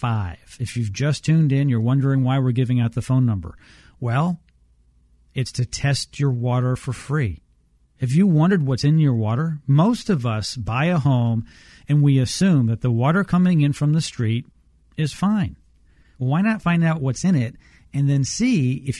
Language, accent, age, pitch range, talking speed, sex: English, American, 40-59, 115-150 Hz, 185 wpm, male